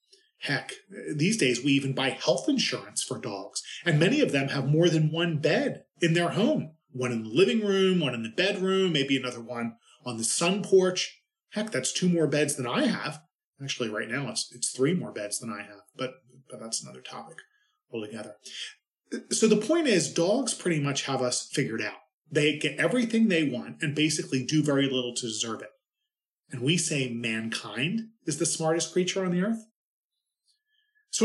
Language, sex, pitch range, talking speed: English, male, 125-185 Hz, 190 wpm